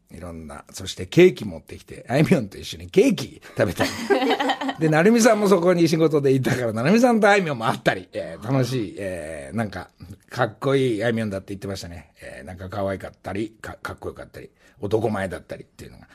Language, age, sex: Japanese, 60-79, male